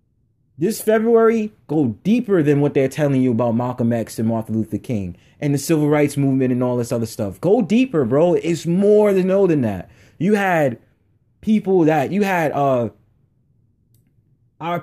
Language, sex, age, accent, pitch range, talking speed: English, male, 30-49, American, 115-155 Hz, 165 wpm